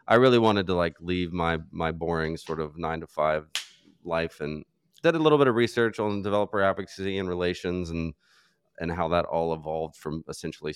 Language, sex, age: English, male, 30-49